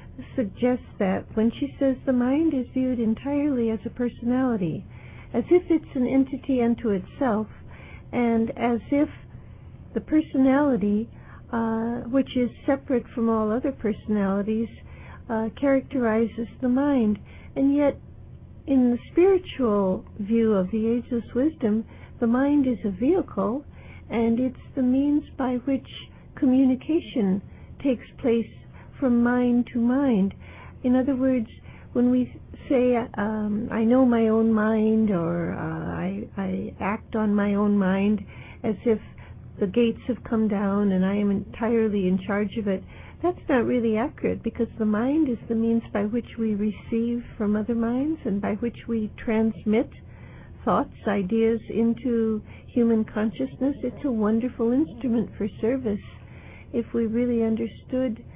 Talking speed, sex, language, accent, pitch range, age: 140 wpm, female, English, American, 215-255 Hz, 60-79